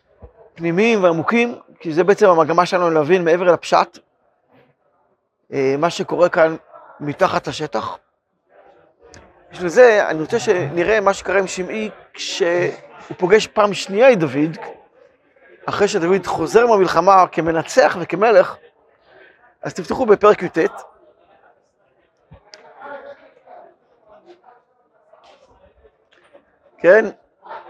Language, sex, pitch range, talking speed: Hebrew, male, 175-240 Hz, 90 wpm